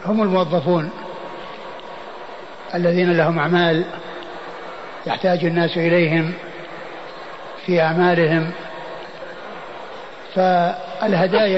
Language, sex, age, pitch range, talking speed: Arabic, male, 60-79, 180-200 Hz, 55 wpm